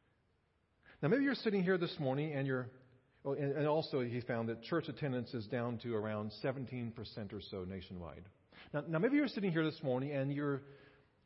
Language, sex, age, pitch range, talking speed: English, male, 40-59, 120-165 Hz, 190 wpm